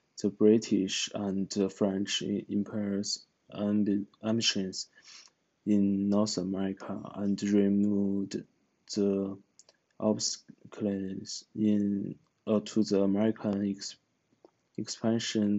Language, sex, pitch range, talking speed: English, male, 100-110 Hz, 85 wpm